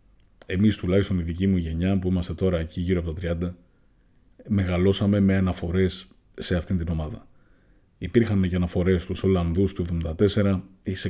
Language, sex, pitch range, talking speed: Greek, male, 90-100 Hz, 160 wpm